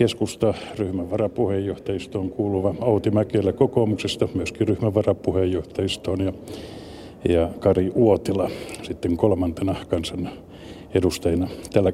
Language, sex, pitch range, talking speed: Finnish, male, 90-110 Hz, 90 wpm